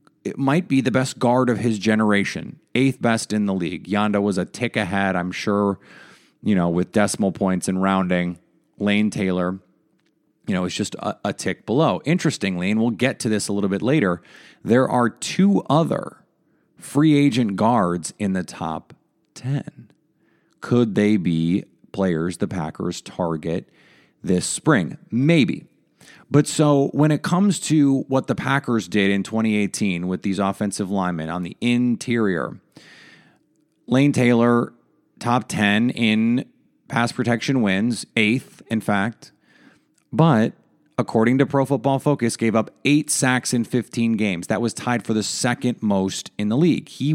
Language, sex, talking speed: English, male, 155 wpm